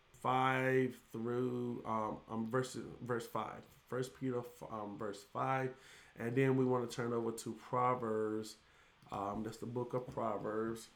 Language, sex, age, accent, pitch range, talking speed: English, male, 20-39, American, 110-125 Hz, 150 wpm